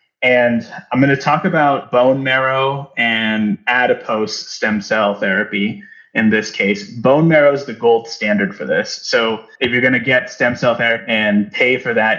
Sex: male